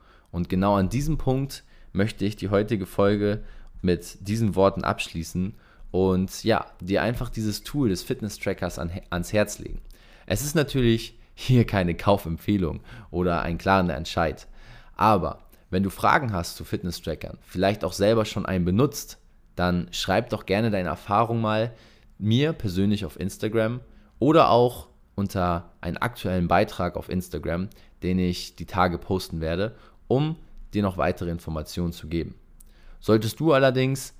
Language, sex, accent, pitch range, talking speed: German, male, German, 85-110 Hz, 145 wpm